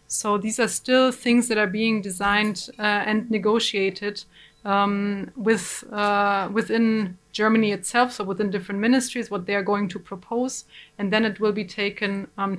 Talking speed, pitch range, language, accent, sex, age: 165 wpm, 200-225 Hz, English, German, female, 30-49